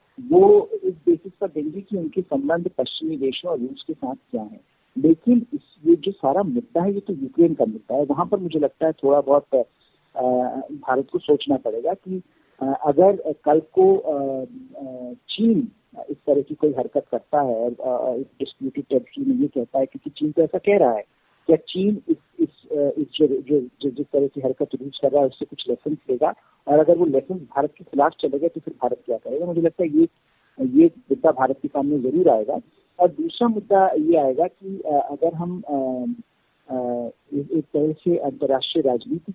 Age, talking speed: 50-69, 175 wpm